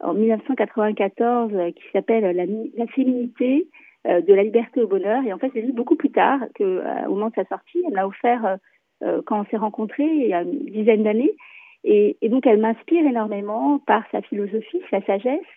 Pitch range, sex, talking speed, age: 205-265 Hz, female, 205 wpm, 40-59